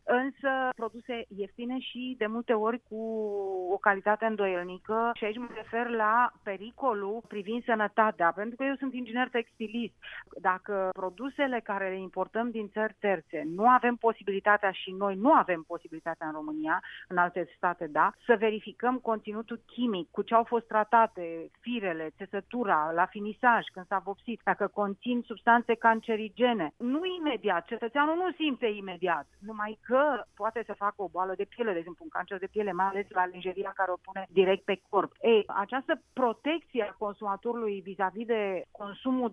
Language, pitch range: Romanian, 190-235 Hz